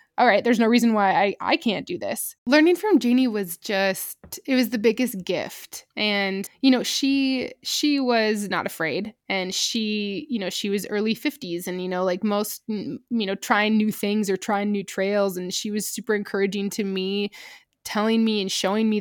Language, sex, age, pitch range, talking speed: English, female, 20-39, 195-245 Hz, 200 wpm